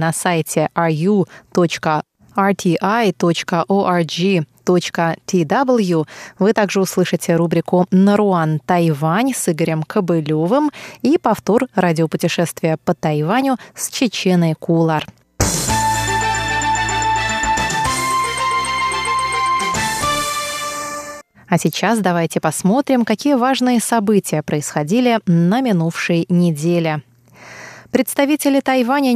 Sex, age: female, 20-39